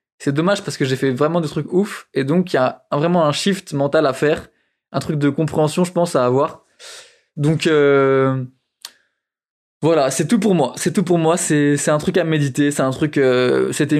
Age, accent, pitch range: 20-39, French, 140-170 Hz